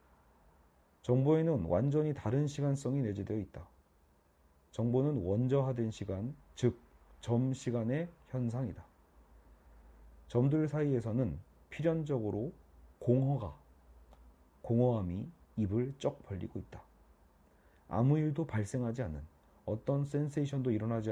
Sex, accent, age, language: male, native, 40-59, Korean